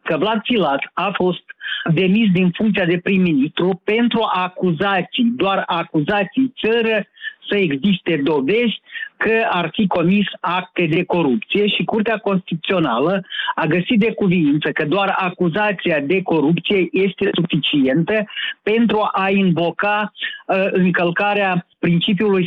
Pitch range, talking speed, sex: 175-215 Hz, 115 wpm, male